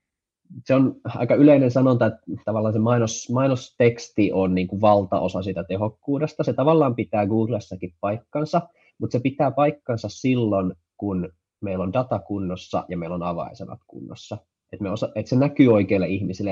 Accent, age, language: native, 20-39, Finnish